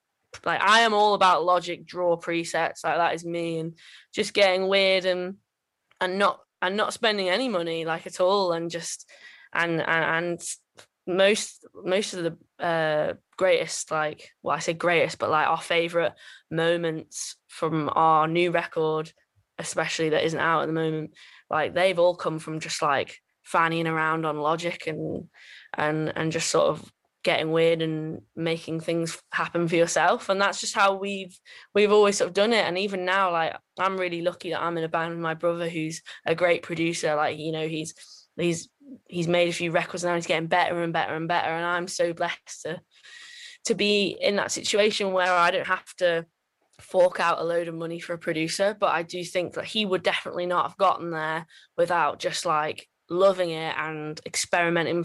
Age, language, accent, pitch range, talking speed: 10-29, English, British, 165-185 Hz, 190 wpm